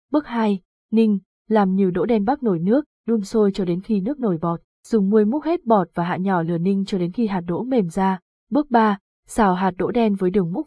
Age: 20-39